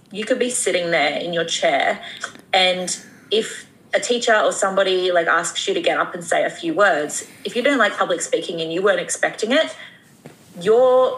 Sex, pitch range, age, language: female, 165-210 Hz, 20-39, English